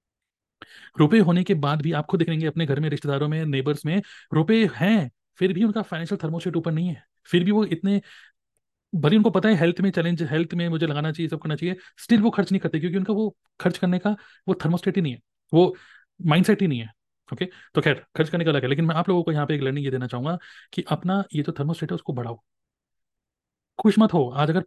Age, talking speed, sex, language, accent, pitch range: 30-49, 235 wpm, male, Hindi, native, 150-190 Hz